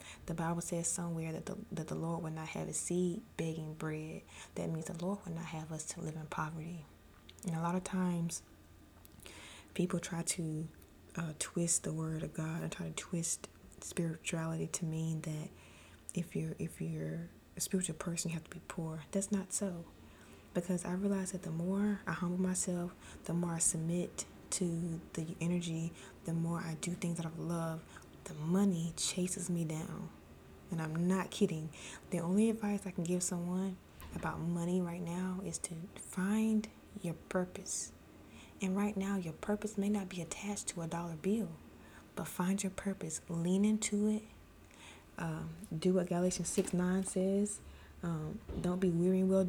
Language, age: English, 20-39